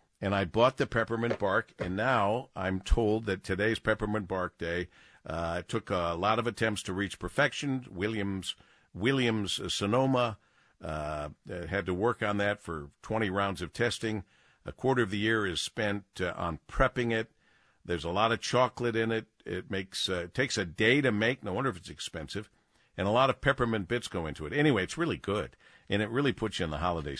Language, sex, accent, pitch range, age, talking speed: English, male, American, 95-140 Hz, 50-69, 200 wpm